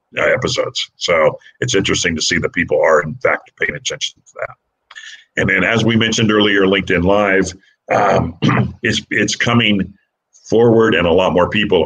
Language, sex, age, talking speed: English, male, 50-69, 175 wpm